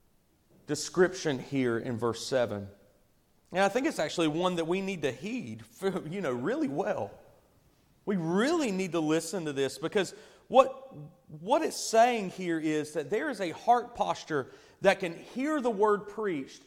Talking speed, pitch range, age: 160 wpm, 170-215 Hz, 30-49